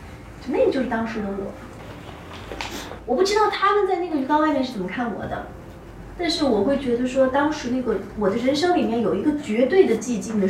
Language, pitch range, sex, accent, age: Chinese, 195-245 Hz, female, native, 20-39